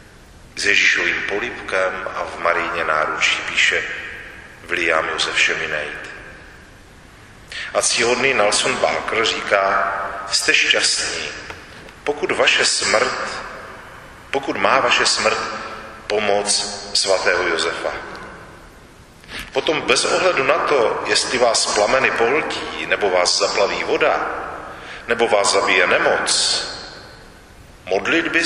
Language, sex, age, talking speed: Czech, male, 40-59, 95 wpm